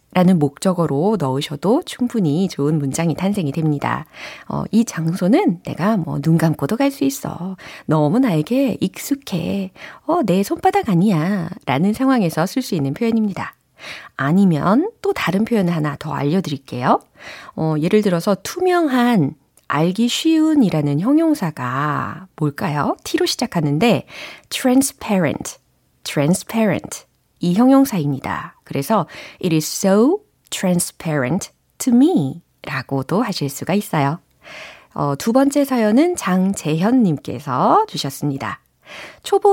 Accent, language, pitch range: native, Korean, 160-265 Hz